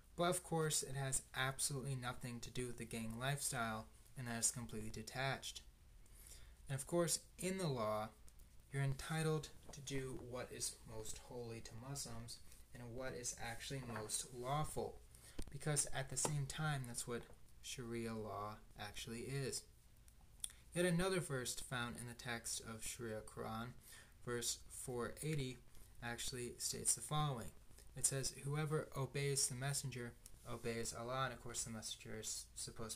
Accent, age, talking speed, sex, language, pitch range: American, 20-39, 150 wpm, male, English, 110-135 Hz